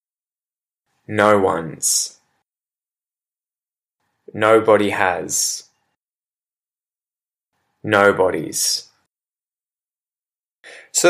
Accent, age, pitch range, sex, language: Australian, 10-29, 105-130 Hz, male, English